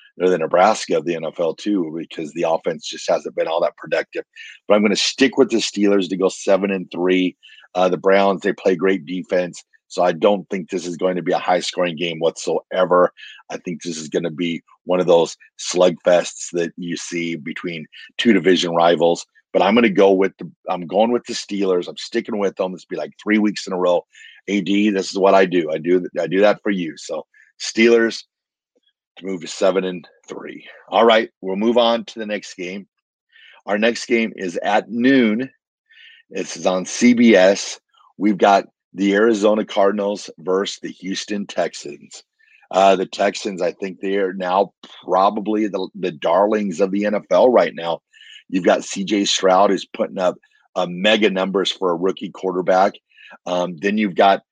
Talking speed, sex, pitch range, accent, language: 190 wpm, male, 90-110 Hz, American, English